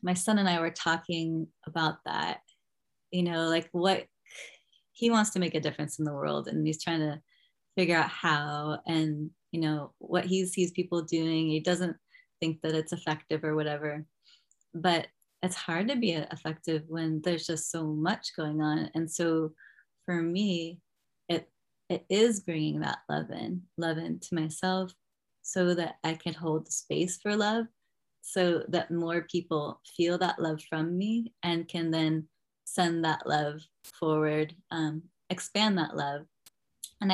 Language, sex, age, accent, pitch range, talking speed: English, female, 20-39, American, 155-180 Hz, 165 wpm